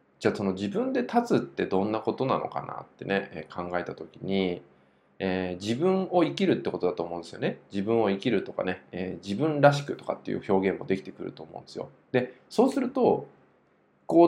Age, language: 20-39, Japanese